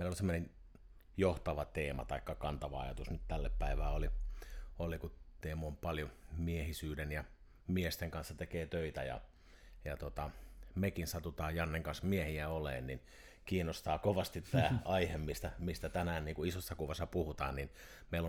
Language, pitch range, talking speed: Finnish, 75-90 Hz, 150 wpm